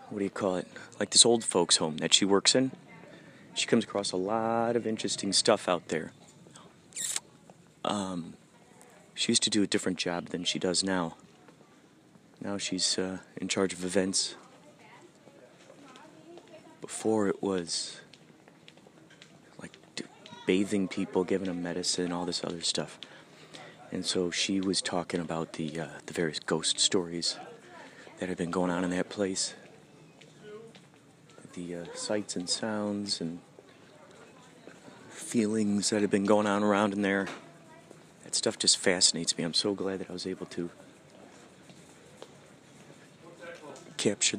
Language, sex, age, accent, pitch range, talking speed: English, male, 30-49, American, 90-115 Hz, 140 wpm